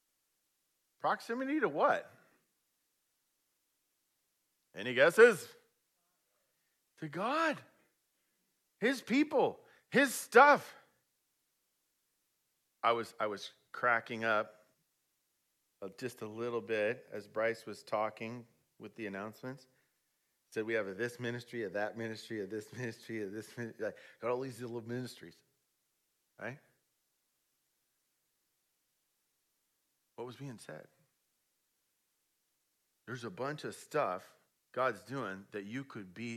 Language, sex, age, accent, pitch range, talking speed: English, male, 40-59, American, 110-130 Hz, 110 wpm